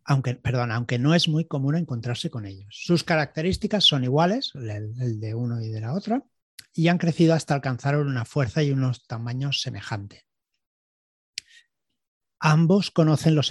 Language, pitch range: Spanish, 125-165 Hz